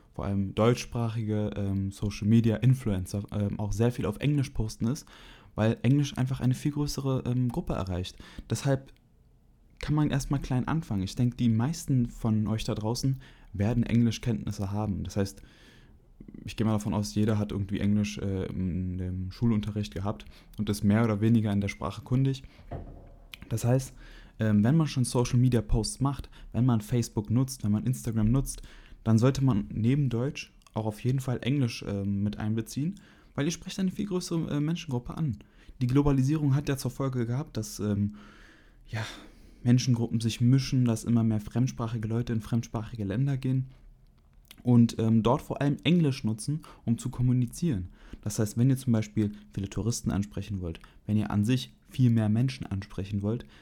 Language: German